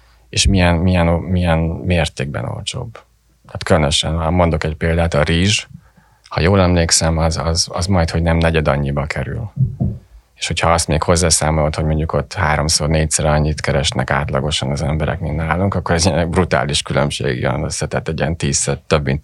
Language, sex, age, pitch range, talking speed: Hungarian, male, 30-49, 75-90 Hz, 170 wpm